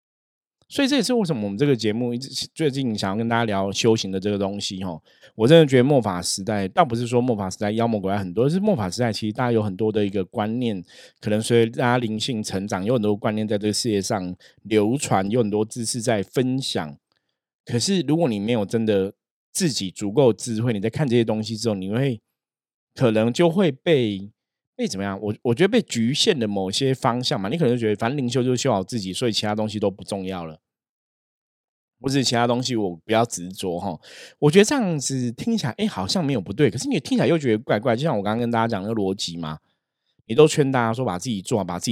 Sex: male